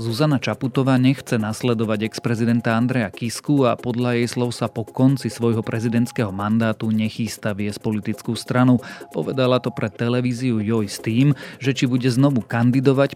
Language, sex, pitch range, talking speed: Slovak, male, 110-125 Hz, 145 wpm